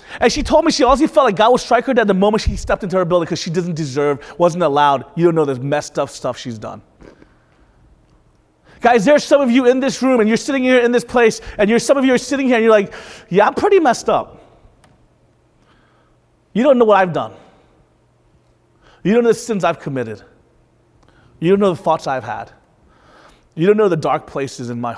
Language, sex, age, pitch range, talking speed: English, male, 30-49, 155-235 Hz, 230 wpm